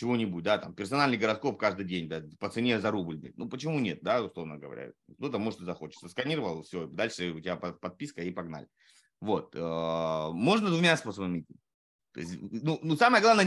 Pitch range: 100-165 Hz